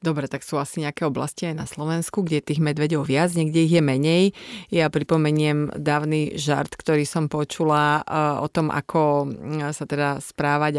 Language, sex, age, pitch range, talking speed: Slovak, female, 30-49, 145-175 Hz, 165 wpm